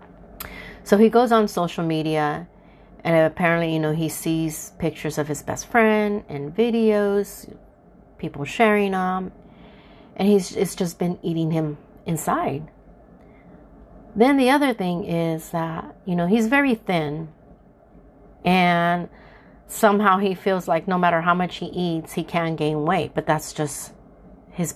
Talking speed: 145 wpm